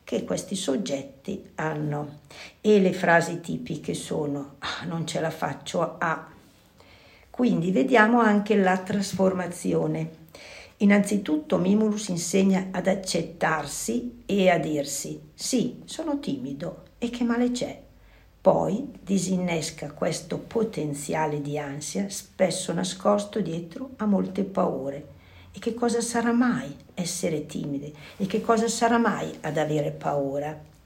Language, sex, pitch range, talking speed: Italian, female, 155-205 Hz, 125 wpm